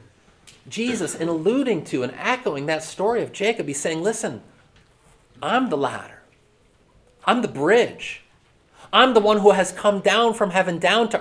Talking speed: 160 wpm